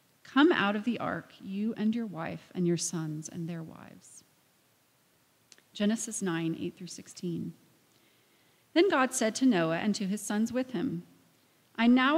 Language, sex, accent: English, female, American